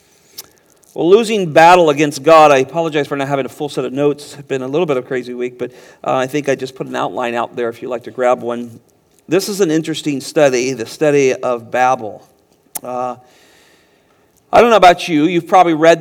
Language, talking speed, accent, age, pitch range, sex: English, 220 wpm, American, 40-59, 135-175 Hz, male